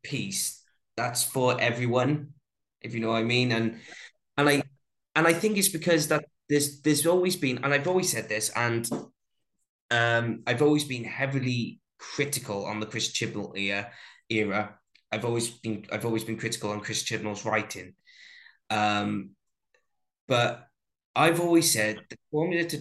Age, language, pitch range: 20-39, English, 105-135 Hz